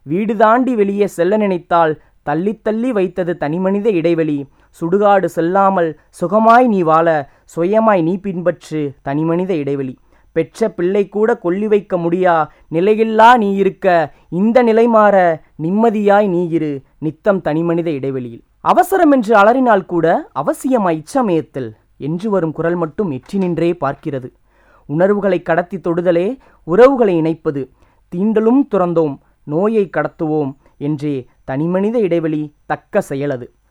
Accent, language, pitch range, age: Indian, English, 160-220 Hz, 20-39